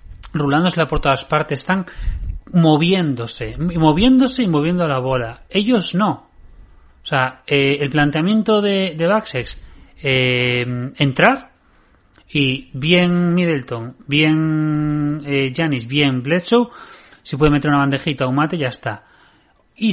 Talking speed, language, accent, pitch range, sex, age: 125 wpm, Spanish, Spanish, 115-155 Hz, male, 30-49